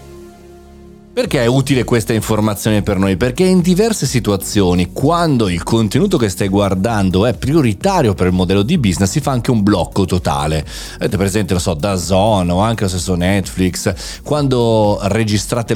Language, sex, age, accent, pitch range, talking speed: Italian, male, 30-49, native, 95-120 Hz, 170 wpm